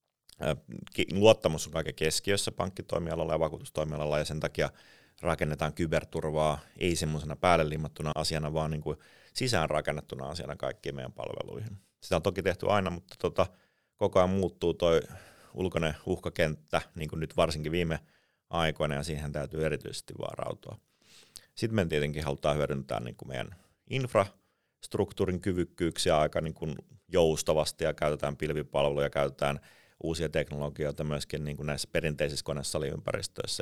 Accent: native